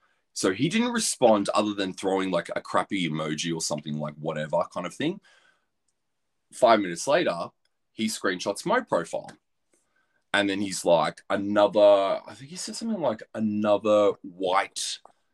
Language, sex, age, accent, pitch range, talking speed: English, male, 20-39, Australian, 85-135 Hz, 150 wpm